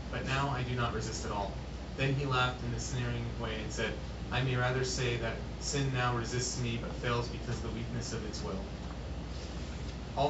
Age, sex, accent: 30-49, male, American